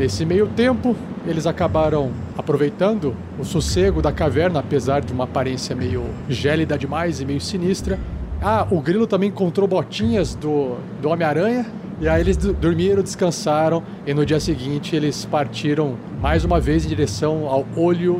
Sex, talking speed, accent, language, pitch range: male, 160 wpm, Brazilian, Portuguese, 145-195 Hz